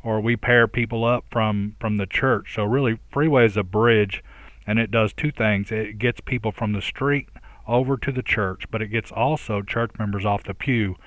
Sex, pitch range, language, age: male, 105-115 Hz, English, 40-59